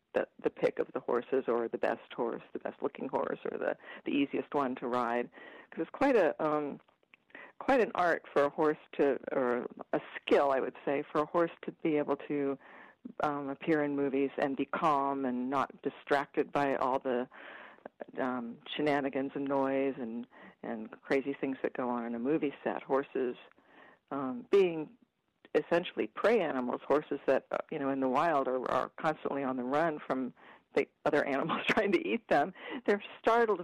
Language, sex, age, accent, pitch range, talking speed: English, female, 50-69, American, 135-175 Hz, 185 wpm